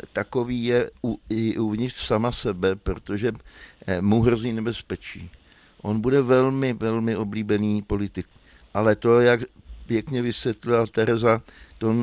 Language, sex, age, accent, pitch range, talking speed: Czech, male, 60-79, native, 105-120 Hz, 120 wpm